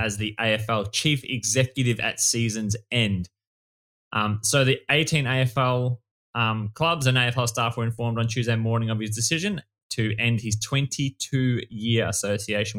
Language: English